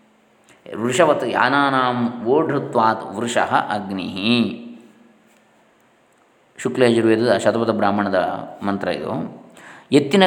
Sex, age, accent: male, 20-39, native